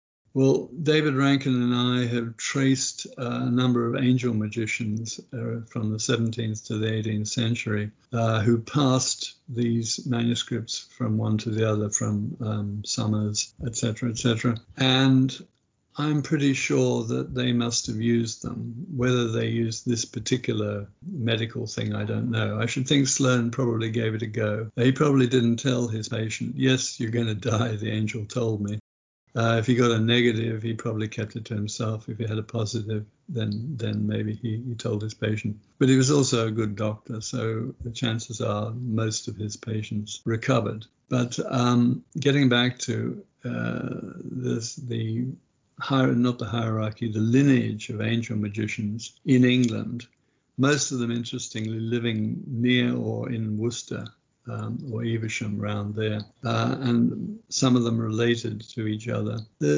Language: English